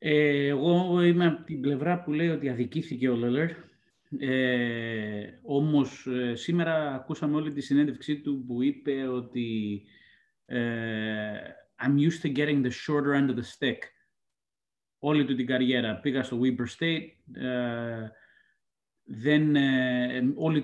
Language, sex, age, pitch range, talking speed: Greek, male, 30-49, 115-140 Hz, 115 wpm